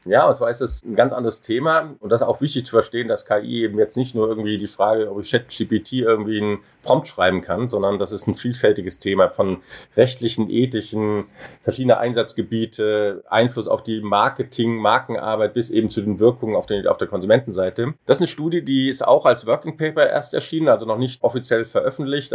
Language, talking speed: German, 200 wpm